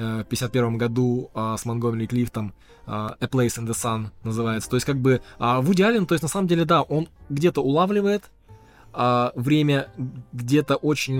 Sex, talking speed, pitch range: male, 180 wpm, 120-150 Hz